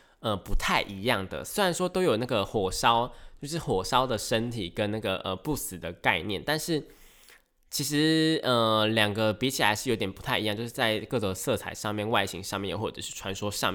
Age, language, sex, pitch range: 20-39, Chinese, male, 100-140 Hz